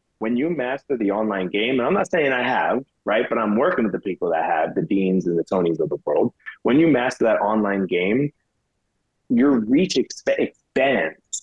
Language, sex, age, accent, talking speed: English, male, 30-49, American, 200 wpm